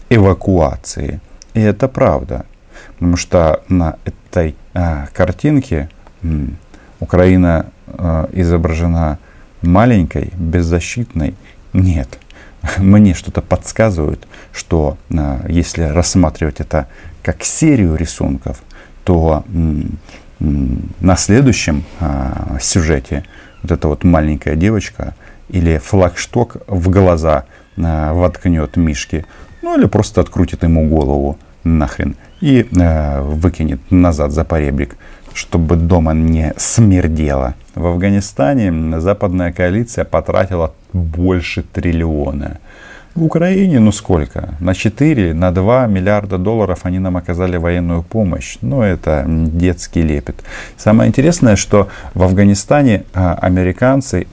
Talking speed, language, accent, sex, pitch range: 105 wpm, Russian, native, male, 80-95 Hz